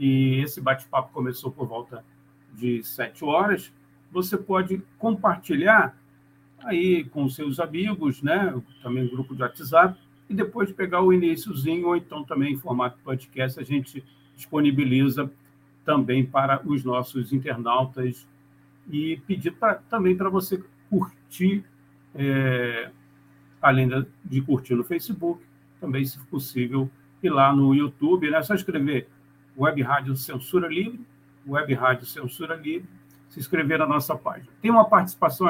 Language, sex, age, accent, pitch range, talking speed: Portuguese, male, 60-79, Brazilian, 135-170 Hz, 140 wpm